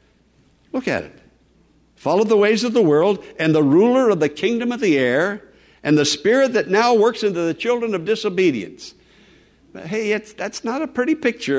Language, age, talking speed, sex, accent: English, 60-79, 185 wpm, male, American